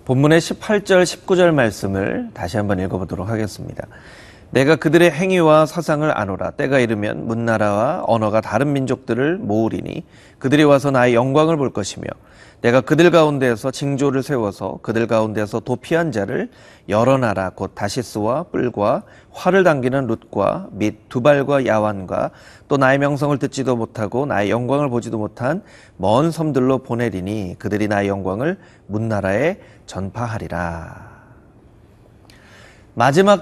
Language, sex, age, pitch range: Korean, male, 30-49, 105-155 Hz